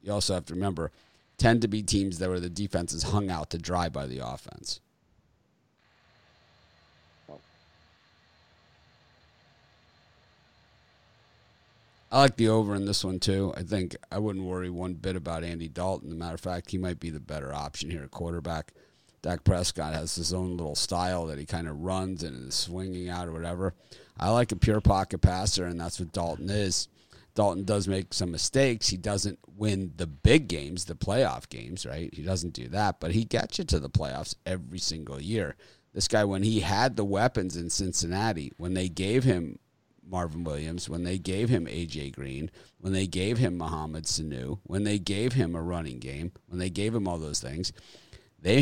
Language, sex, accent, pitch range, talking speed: English, male, American, 85-100 Hz, 190 wpm